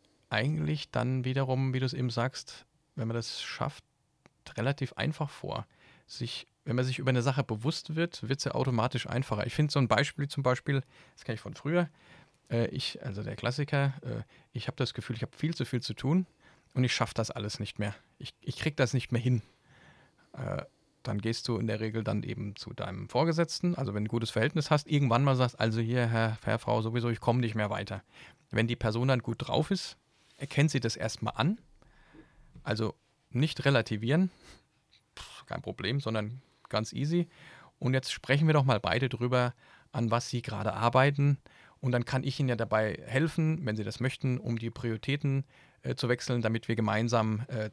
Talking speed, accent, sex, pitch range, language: 200 wpm, German, male, 115-140 Hz, German